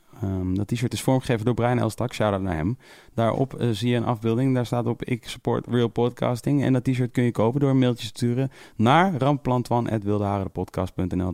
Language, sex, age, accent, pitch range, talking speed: Dutch, male, 30-49, Dutch, 95-130 Hz, 190 wpm